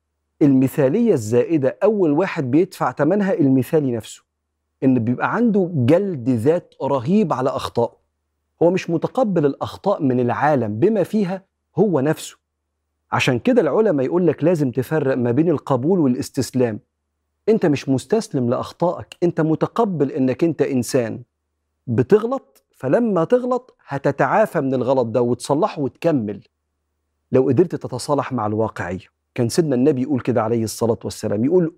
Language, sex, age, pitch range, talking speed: Arabic, male, 40-59, 115-165 Hz, 130 wpm